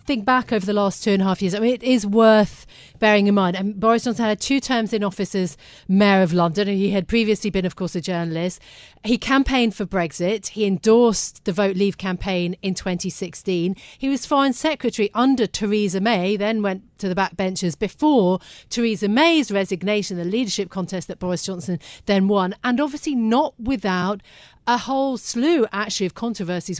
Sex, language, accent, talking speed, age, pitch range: female, English, British, 190 wpm, 40-59, 185-225 Hz